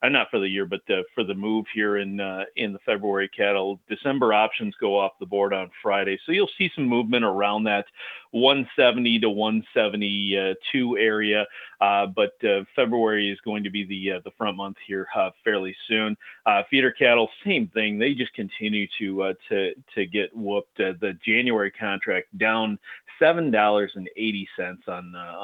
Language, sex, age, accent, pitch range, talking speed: English, male, 40-59, American, 100-130 Hz, 185 wpm